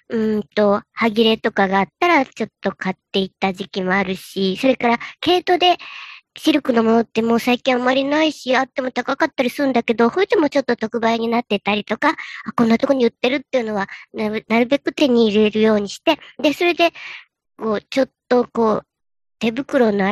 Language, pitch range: Japanese, 200-265 Hz